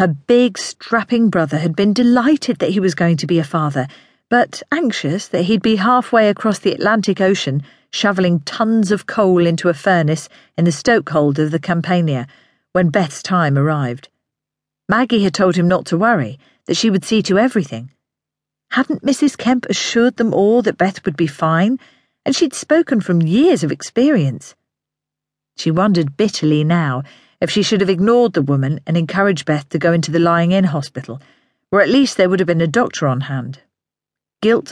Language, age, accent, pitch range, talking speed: English, 40-59, British, 150-220 Hz, 180 wpm